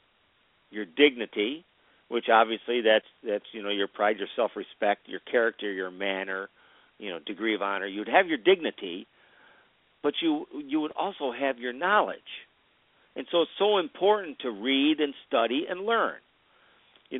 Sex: male